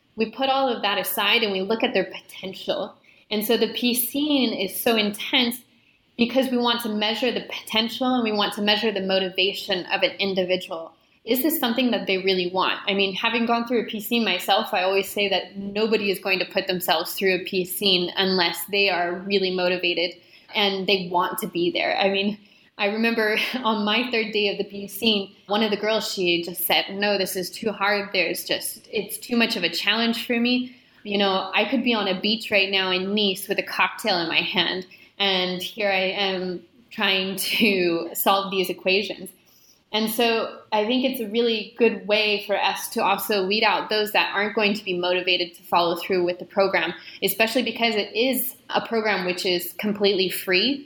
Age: 20-39